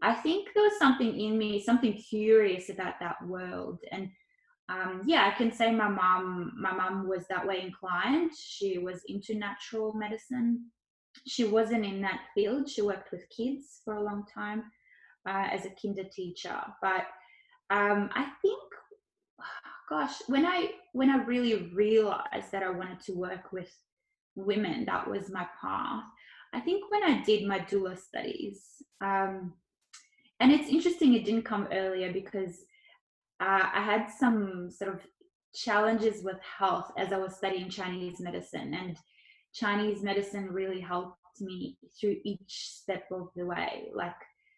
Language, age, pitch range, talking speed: English, 20-39, 190-245 Hz, 155 wpm